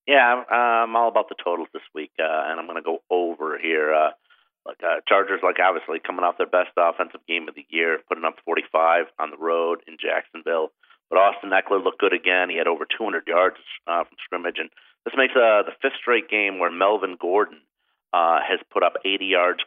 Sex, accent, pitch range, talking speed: male, American, 100-140 Hz, 215 wpm